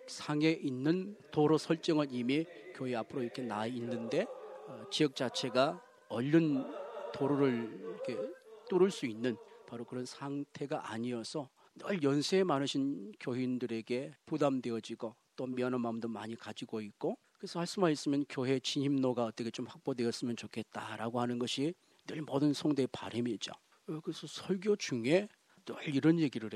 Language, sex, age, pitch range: Korean, male, 40-59, 120-150 Hz